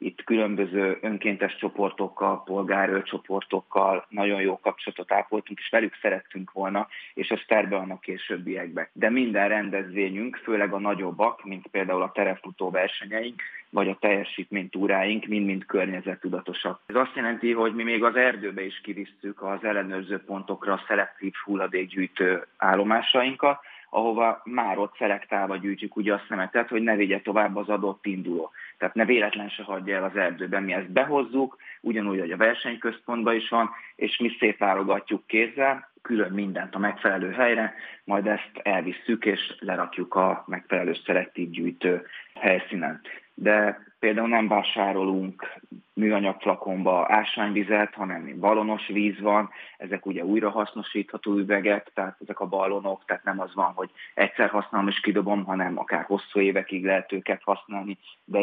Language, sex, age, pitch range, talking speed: Hungarian, male, 30-49, 95-110 Hz, 140 wpm